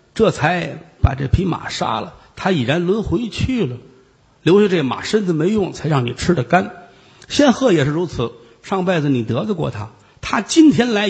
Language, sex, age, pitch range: Chinese, male, 50-69, 130-200 Hz